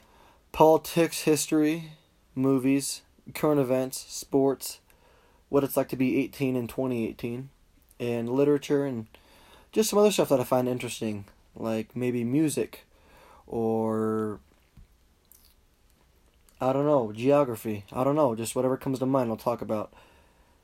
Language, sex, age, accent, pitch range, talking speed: English, male, 20-39, American, 110-140 Hz, 130 wpm